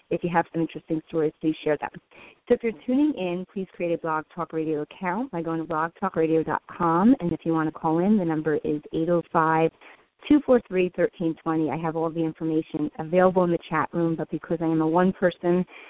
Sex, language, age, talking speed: female, English, 30-49, 195 wpm